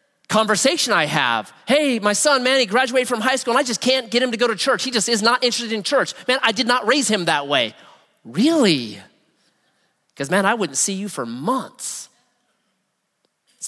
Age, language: 30-49, English